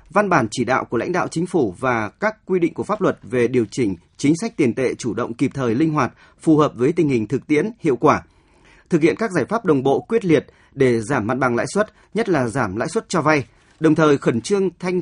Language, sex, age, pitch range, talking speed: Vietnamese, male, 30-49, 130-175 Hz, 260 wpm